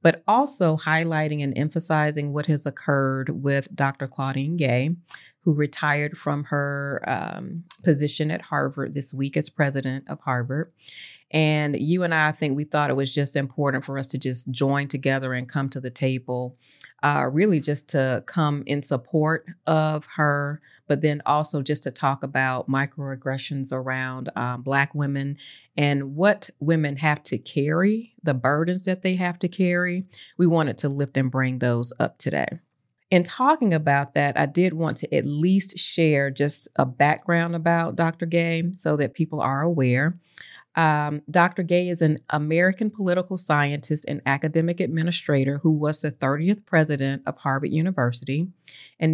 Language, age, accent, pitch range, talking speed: English, 40-59, American, 140-170 Hz, 165 wpm